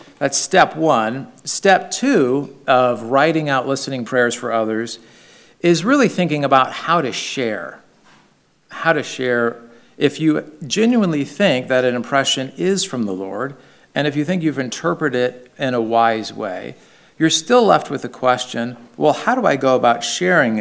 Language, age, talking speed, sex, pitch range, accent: English, 50-69, 165 wpm, male, 120-155 Hz, American